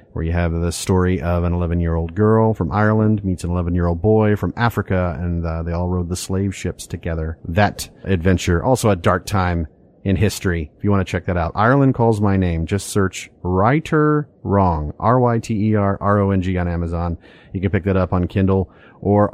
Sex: male